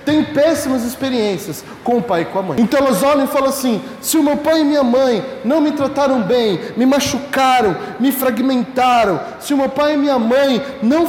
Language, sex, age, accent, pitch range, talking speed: Portuguese, male, 20-39, Brazilian, 250-310 Hz, 210 wpm